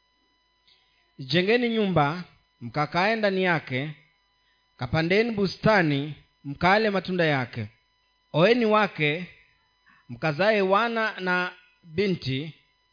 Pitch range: 145-200 Hz